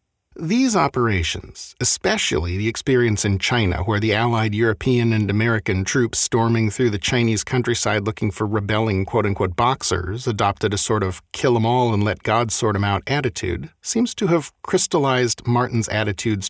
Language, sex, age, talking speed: English, male, 40-59, 160 wpm